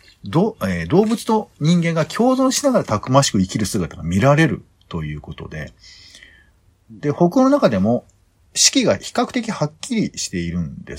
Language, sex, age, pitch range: Japanese, male, 50-69, 90-150 Hz